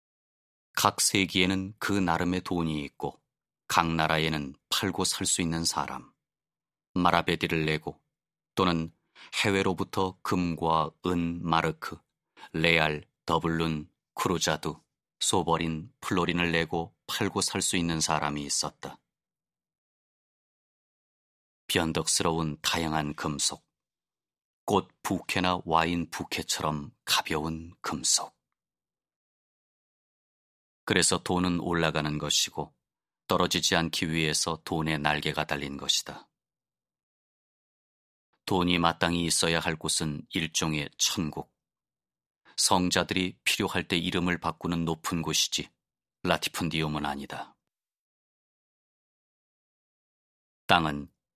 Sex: male